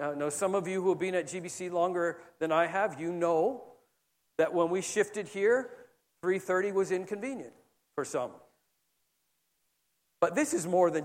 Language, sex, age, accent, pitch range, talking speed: English, male, 50-69, American, 150-200 Hz, 165 wpm